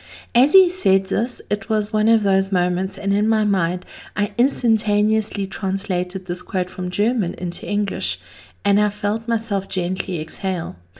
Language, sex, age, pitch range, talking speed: English, female, 40-59, 185-215 Hz, 160 wpm